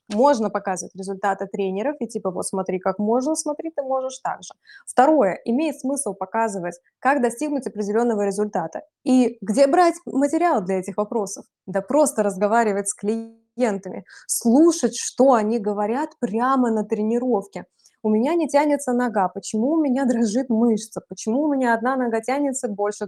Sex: female